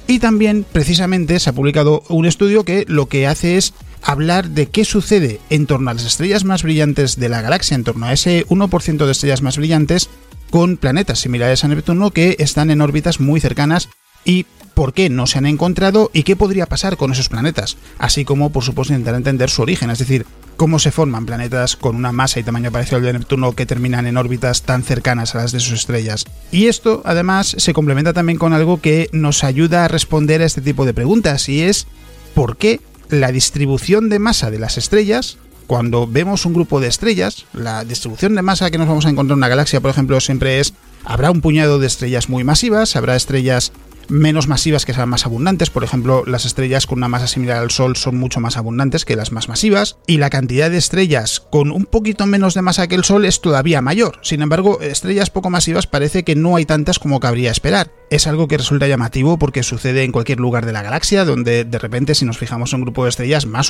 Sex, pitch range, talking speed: male, 125-170 Hz, 220 wpm